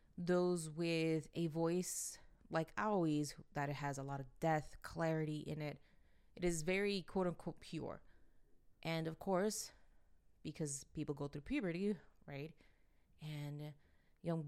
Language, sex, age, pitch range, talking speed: English, female, 20-39, 155-200 Hz, 135 wpm